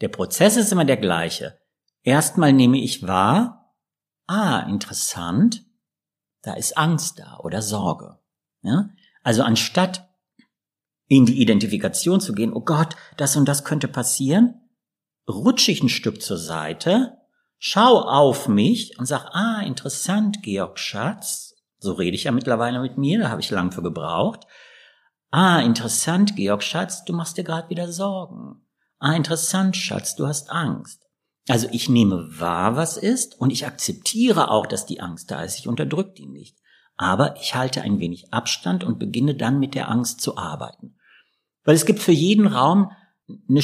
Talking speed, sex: 160 wpm, male